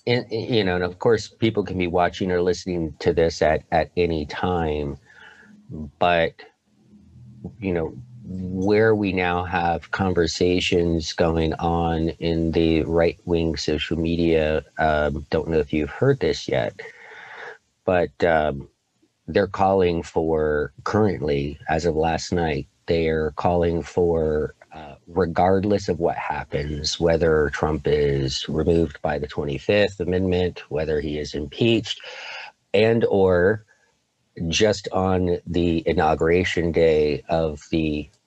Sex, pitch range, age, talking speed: male, 80-95 Hz, 40-59, 125 wpm